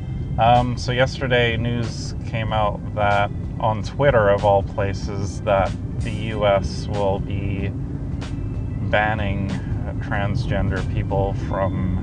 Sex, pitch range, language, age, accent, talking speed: male, 95-120 Hz, English, 20-39, American, 105 wpm